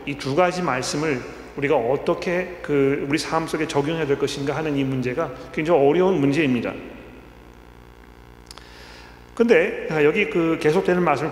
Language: Korean